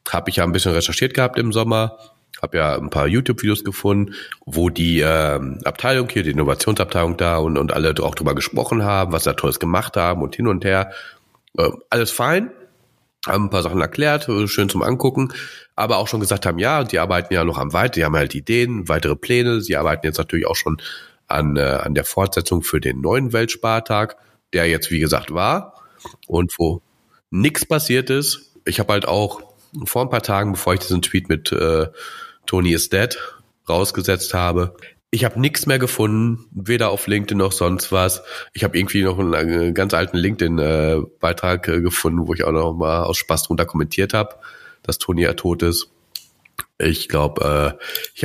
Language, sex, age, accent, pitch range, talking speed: German, male, 40-59, German, 80-110 Hz, 190 wpm